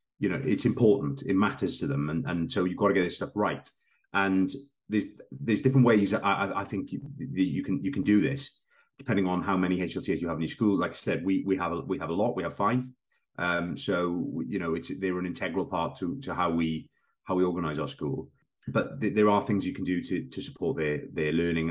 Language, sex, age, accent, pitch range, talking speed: English, male, 30-49, British, 85-105 Hz, 245 wpm